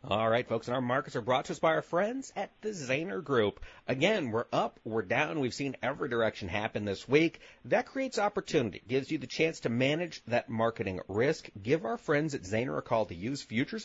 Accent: American